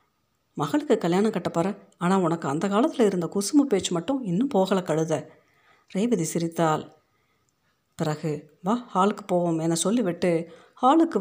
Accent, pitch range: native, 165-210 Hz